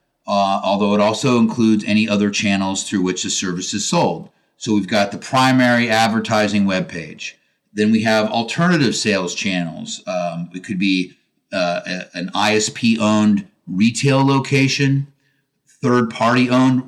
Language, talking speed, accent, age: English, 130 wpm, American, 30-49